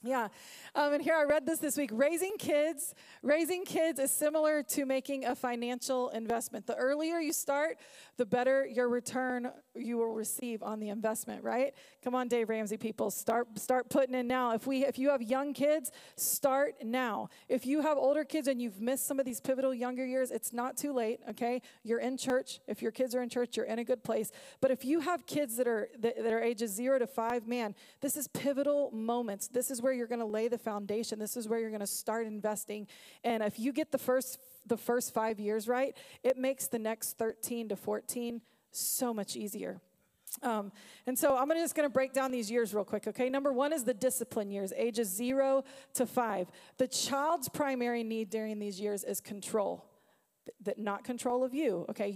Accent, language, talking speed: American, English, 215 wpm